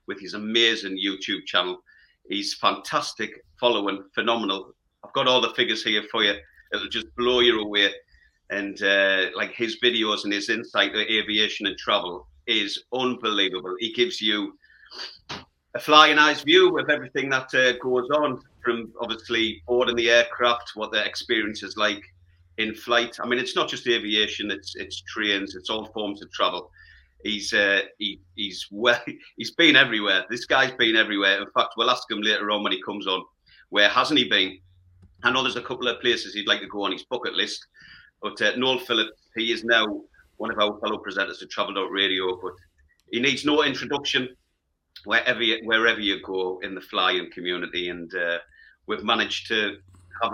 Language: English